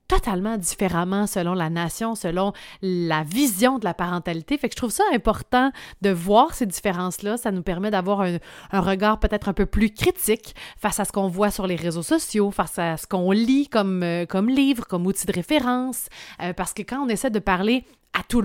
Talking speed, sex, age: 210 wpm, female, 30-49